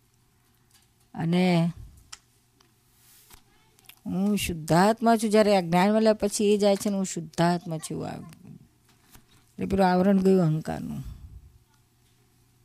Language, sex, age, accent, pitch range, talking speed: Gujarati, female, 50-69, native, 140-205 Hz, 85 wpm